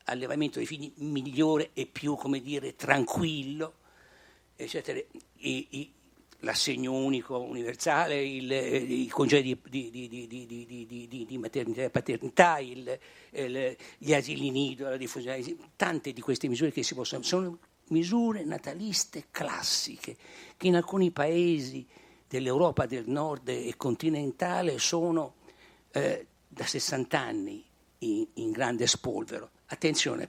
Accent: native